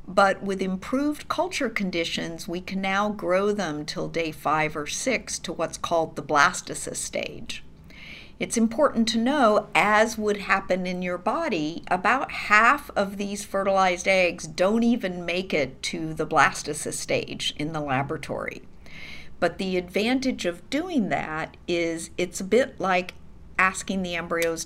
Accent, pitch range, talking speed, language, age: American, 165-205 Hz, 150 wpm, English, 50-69